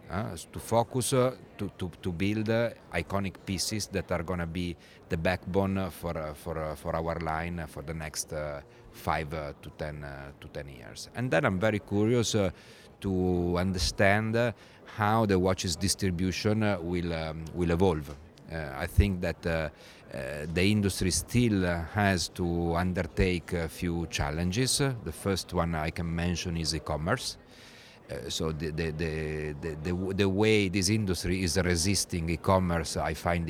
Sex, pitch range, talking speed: male, 85-100 Hz, 165 wpm